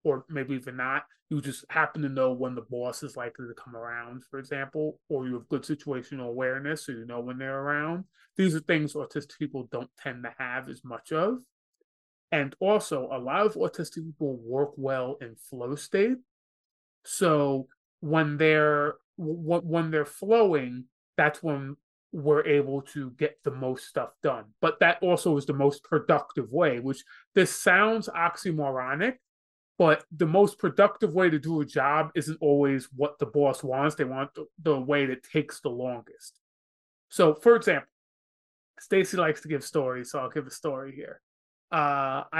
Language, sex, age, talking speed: English, male, 30-49, 175 wpm